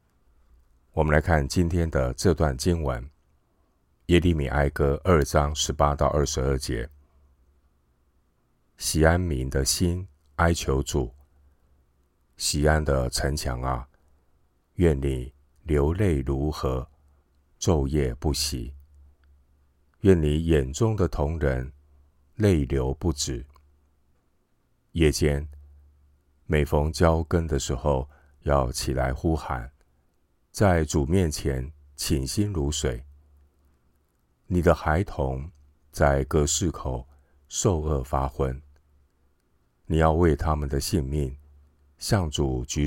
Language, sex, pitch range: Chinese, male, 70-80 Hz